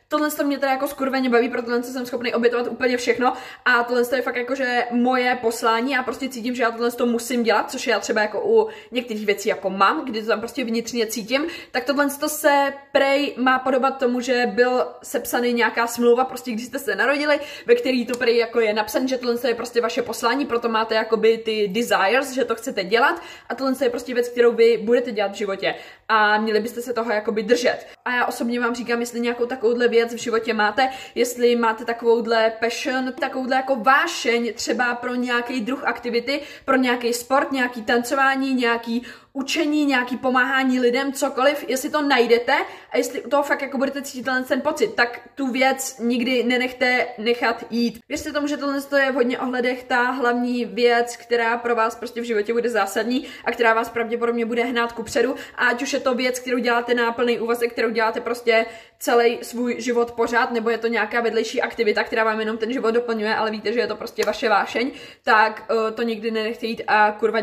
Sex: female